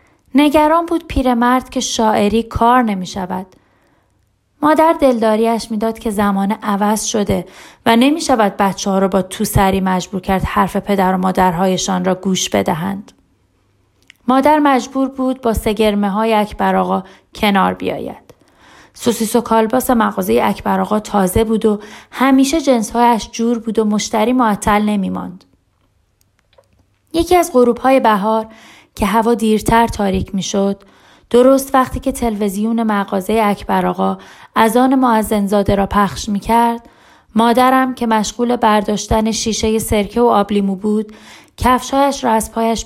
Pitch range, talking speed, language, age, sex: 195-235 Hz, 135 wpm, English, 30-49, female